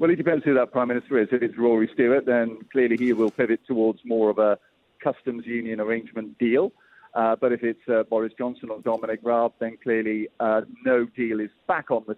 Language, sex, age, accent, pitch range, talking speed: English, male, 50-69, British, 115-150 Hz, 215 wpm